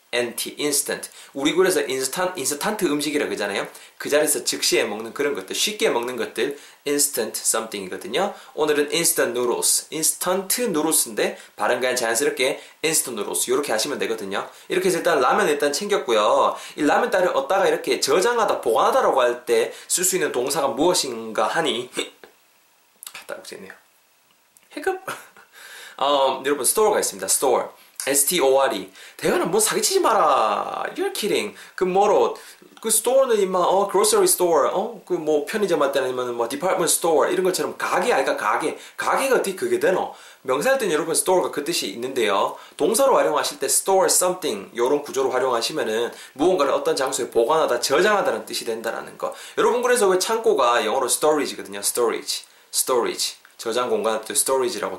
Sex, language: male, Korean